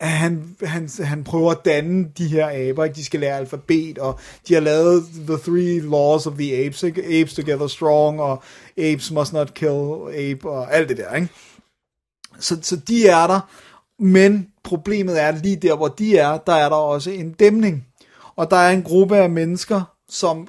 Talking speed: 195 wpm